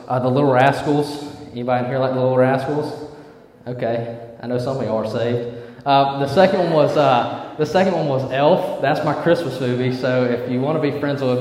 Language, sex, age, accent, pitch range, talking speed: English, male, 20-39, American, 120-145 Hz, 220 wpm